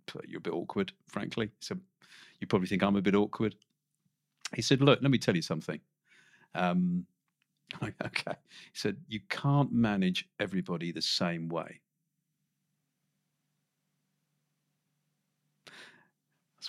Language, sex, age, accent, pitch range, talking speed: English, male, 50-69, British, 100-160 Hz, 120 wpm